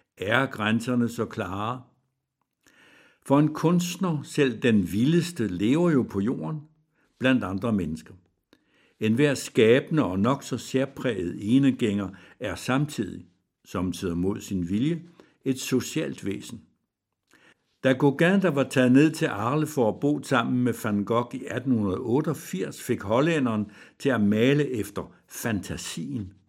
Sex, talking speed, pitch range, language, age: male, 135 wpm, 105-145 Hz, Danish, 60-79